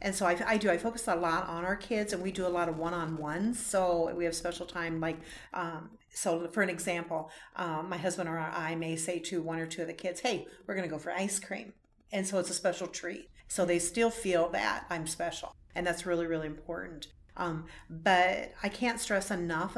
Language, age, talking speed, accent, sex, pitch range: English, 40-59, 230 wpm, American, female, 165-190 Hz